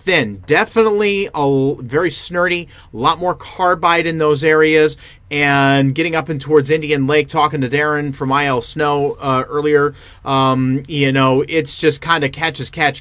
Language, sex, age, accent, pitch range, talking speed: English, male, 30-49, American, 125-160 Hz, 180 wpm